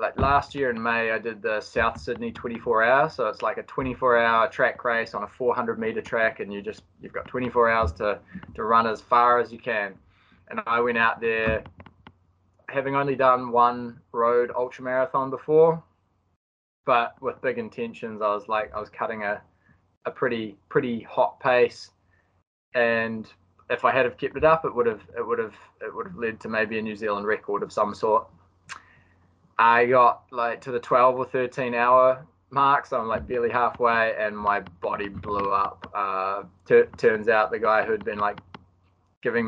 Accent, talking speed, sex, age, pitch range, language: Australian, 200 wpm, male, 20-39, 105-135 Hz, English